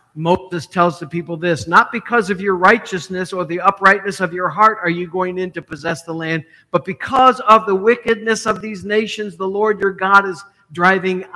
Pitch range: 175-215 Hz